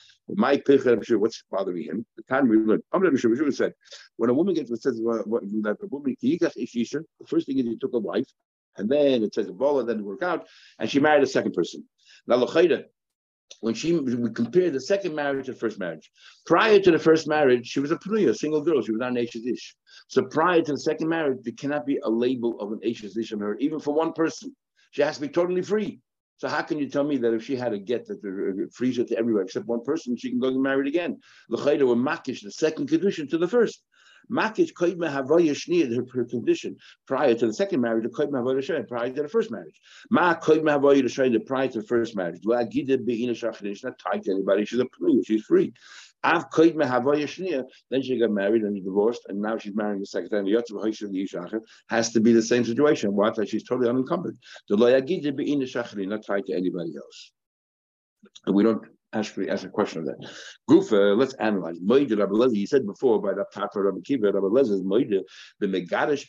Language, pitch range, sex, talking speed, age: English, 110-155 Hz, male, 215 wpm, 60-79